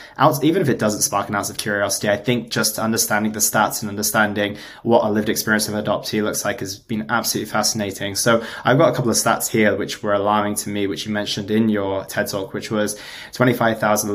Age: 20-39